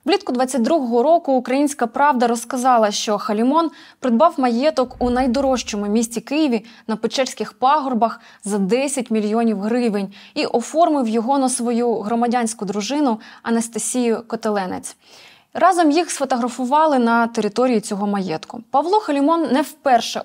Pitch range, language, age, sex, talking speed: 220-265 Hz, Ukrainian, 20-39, female, 120 wpm